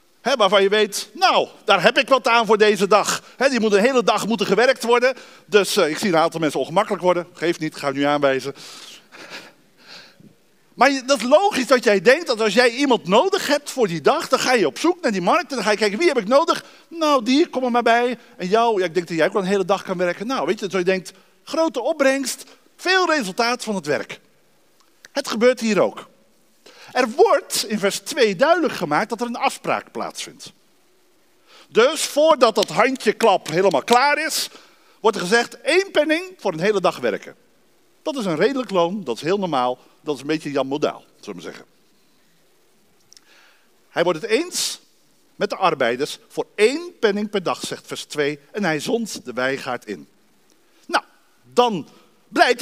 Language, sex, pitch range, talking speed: Dutch, male, 185-260 Hz, 195 wpm